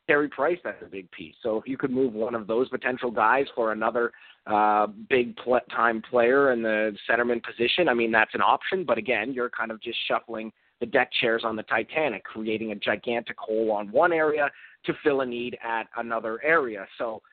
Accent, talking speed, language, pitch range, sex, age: American, 205 wpm, English, 110-130 Hz, male, 30-49